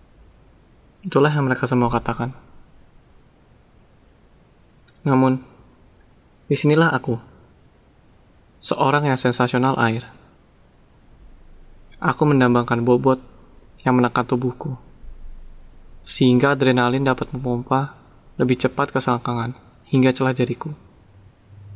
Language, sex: Indonesian, male